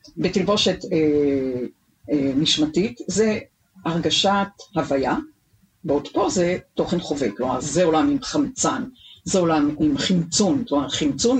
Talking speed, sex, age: 120 wpm, female, 50-69